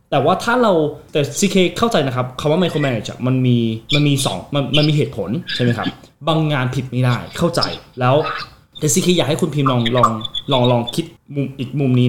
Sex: male